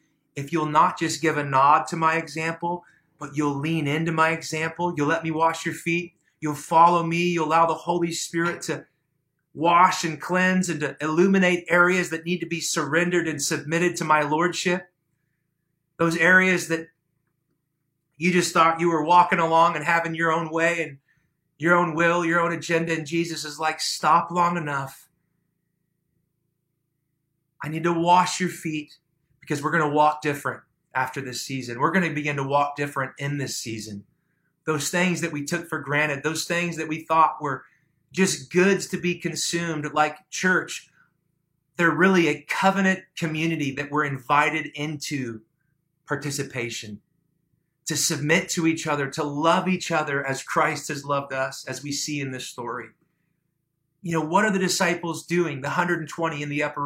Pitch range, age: 150-170 Hz, 30-49